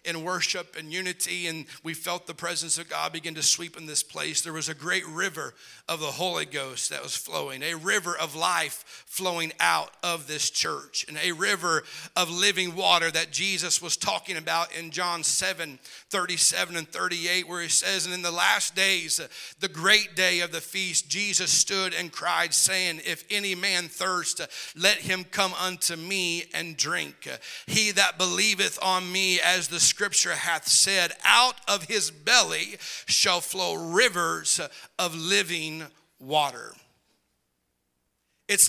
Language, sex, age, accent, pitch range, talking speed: English, male, 40-59, American, 170-205 Hz, 165 wpm